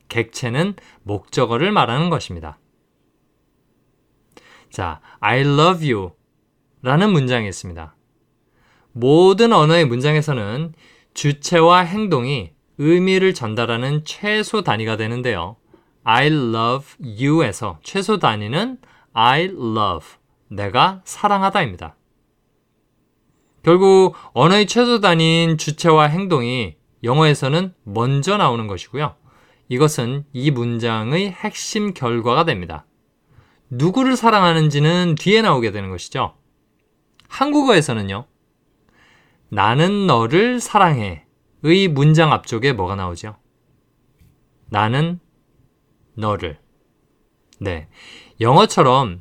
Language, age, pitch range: Korean, 20-39, 115-175 Hz